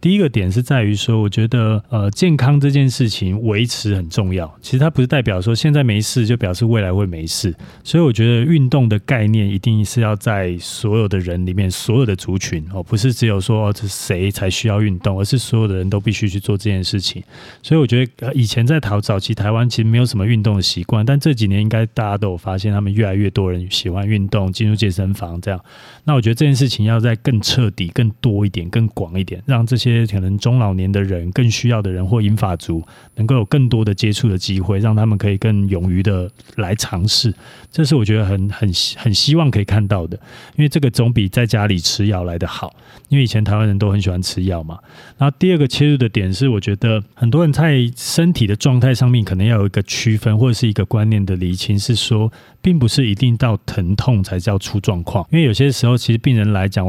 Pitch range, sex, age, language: 100-125 Hz, male, 30-49, Chinese